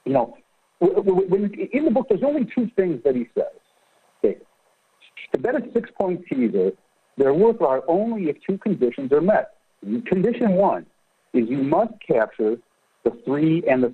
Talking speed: 170 wpm